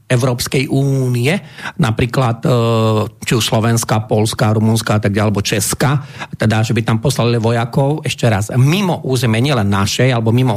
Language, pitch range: Slovak, 125-155 Hz